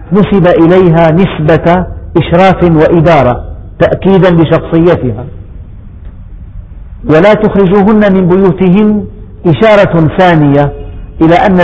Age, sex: 50-69, male